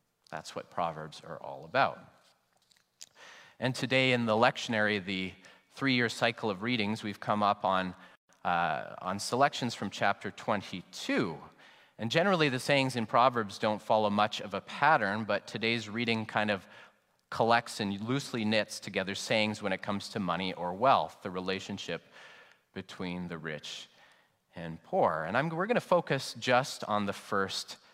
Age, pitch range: 30-49, 95-120 Hz